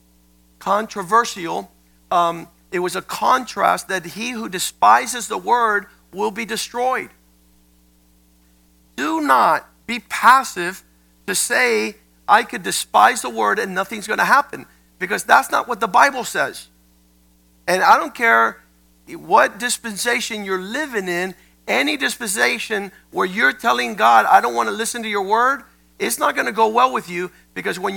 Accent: American